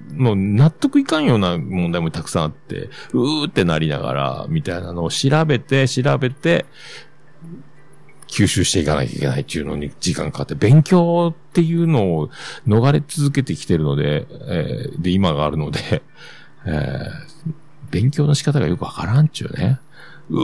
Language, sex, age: Japanese, male, 50-69